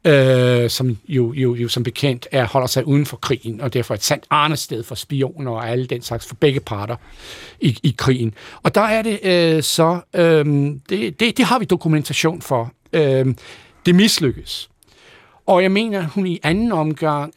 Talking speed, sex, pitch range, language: 185 wpm, male, 125-165 Hz, Danish